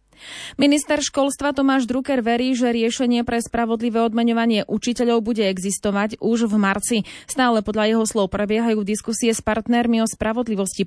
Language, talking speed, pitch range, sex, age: Slovak, 145 wpm, 205-250 Hz, female, 20-39